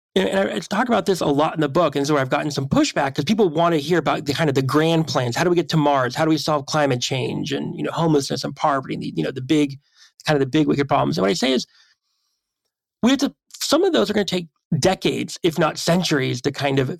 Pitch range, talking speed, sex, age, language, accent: 140-200 Hz, 290 wpm, male, 30-49, English, American